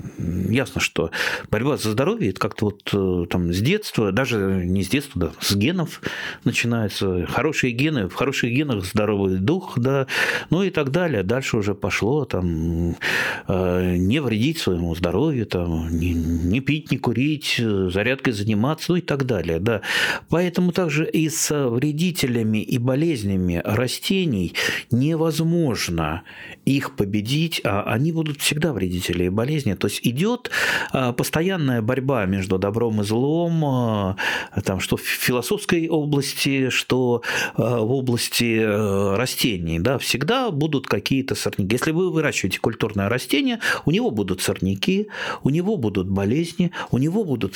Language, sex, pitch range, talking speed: Russian, male, 100-150 Hz, 130 wpm